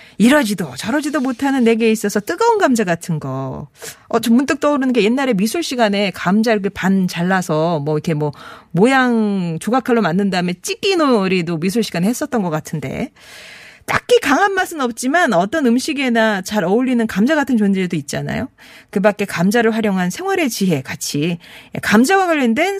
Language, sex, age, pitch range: Korean, female, 40-59, 190-275 Hz